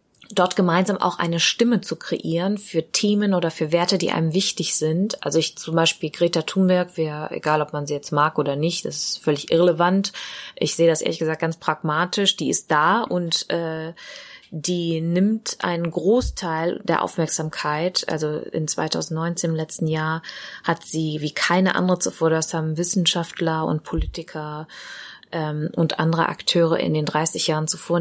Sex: female